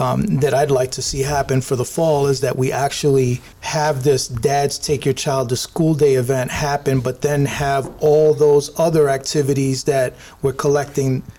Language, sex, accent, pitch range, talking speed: English, male, American, 135-155 Hz, 185 wpm